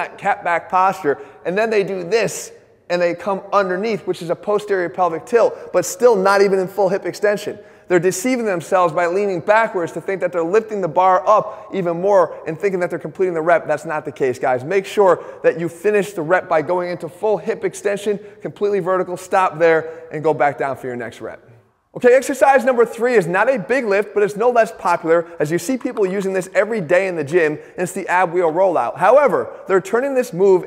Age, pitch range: 30-49, 165-205 Hz